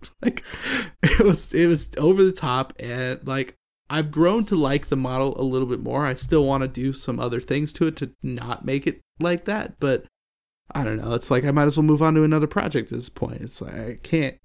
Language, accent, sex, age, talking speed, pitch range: English, American, male, 20-39, 240 wpm, 125-160 Hz